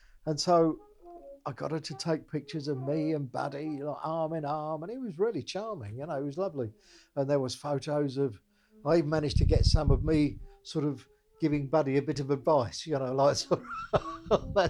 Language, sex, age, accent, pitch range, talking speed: English, male, 50-69, British, 130-165 Hz, 210 wpm